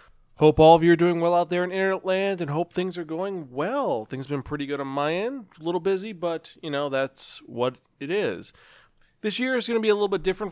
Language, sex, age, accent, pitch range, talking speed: English, male, 30-49, American, 135-170 Hz, 265 wpm